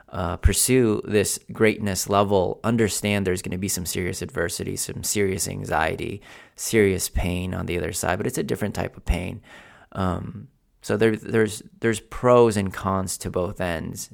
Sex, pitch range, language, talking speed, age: male, 90-105 Hz, English, 170 wpm, 30-49